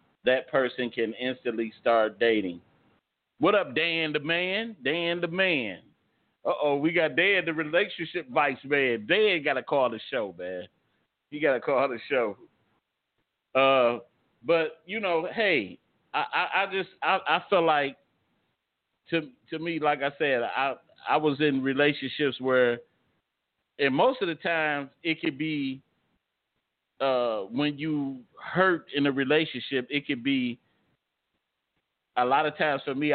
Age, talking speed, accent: 40-59, 155 wpm, American